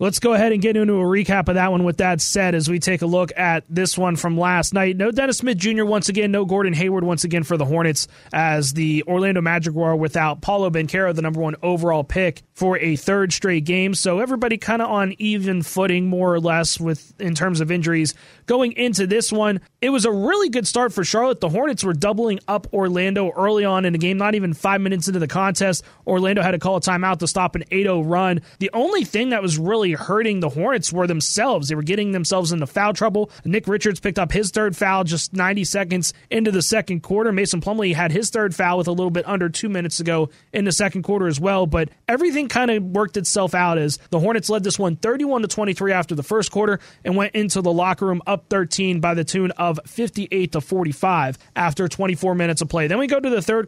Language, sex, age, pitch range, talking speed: English, male, 30-49, 170-210 Hz, 235 wpm